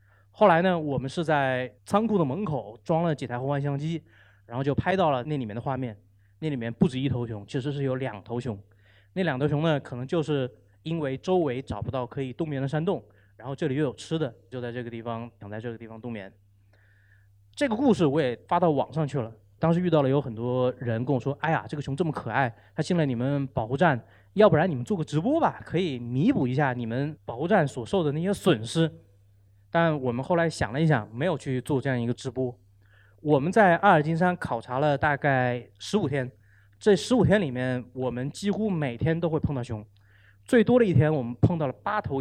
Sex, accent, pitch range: male, native, 110-160 Hz